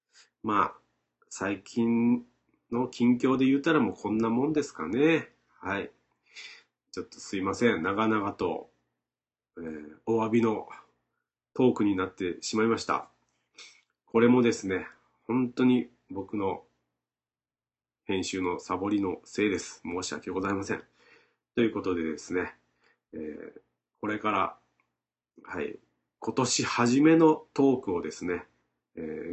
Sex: male